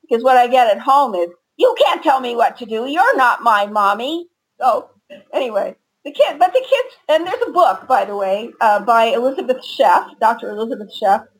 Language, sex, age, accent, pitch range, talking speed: English, female, 50-69, American, 200-275 Hz, 205 wpm